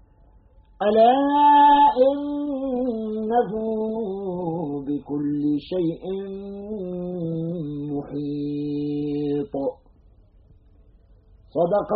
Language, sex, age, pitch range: Arabic, male, 50-69, 130-220 Hz